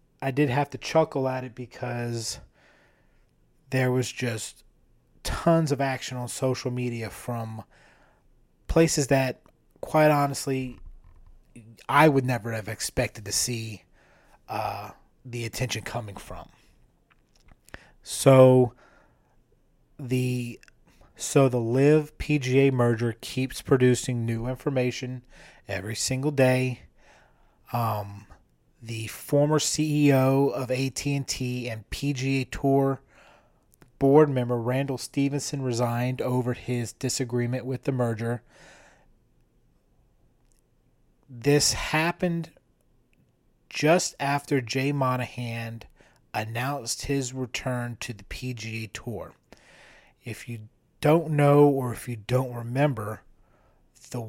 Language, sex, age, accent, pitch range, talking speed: English, male, 30-49, American, 120-140 Hz, 100 wpm